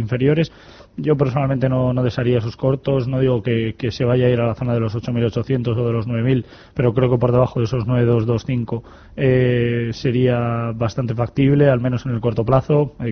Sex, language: male, Spanish